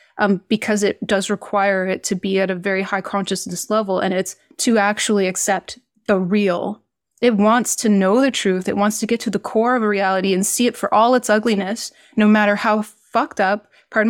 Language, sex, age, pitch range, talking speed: English, female, 20-39, 195-225 Hz, 215 wpm